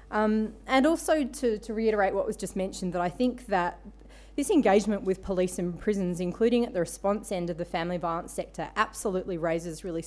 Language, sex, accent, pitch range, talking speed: English, female, Australian, 170-215 Hz, 195 wpm